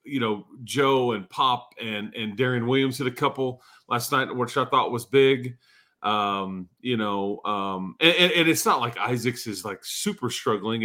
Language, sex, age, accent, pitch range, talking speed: English, male, 30-49, American, 115-145 Hz, 190 wpm